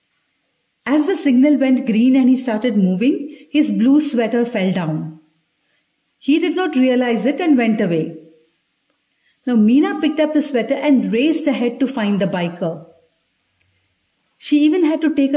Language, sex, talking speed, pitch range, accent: English, female, 155 wpm, 195-270 Hz, Indian